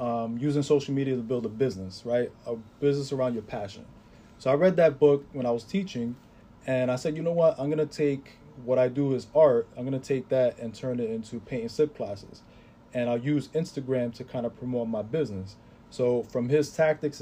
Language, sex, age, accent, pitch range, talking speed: English, male, 20-39, American, 120-150 Hz, 225 wpm